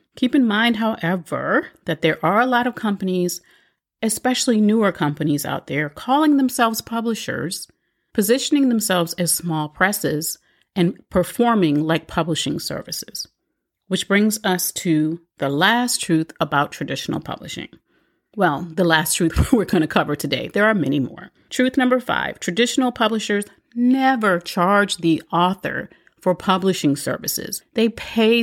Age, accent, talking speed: 40-59, American, 140 wpm